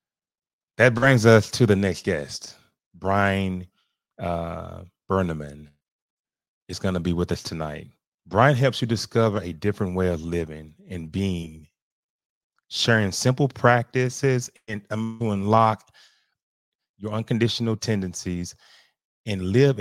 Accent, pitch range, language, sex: American, 85-110 Hz, English, male